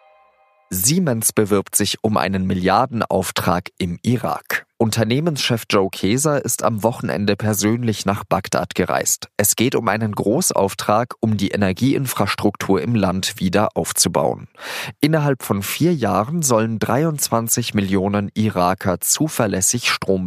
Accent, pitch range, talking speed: German, 95-125 Hz, 120 wpm